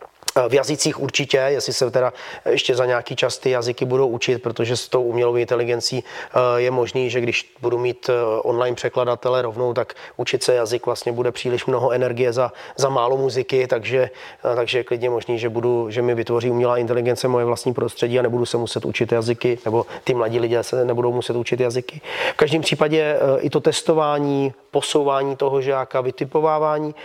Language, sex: Czech, male